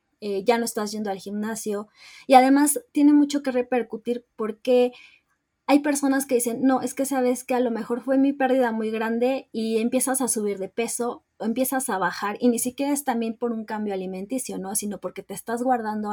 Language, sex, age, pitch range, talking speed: Spanish, female, 20-39, 205-250 Hz, 205 wpm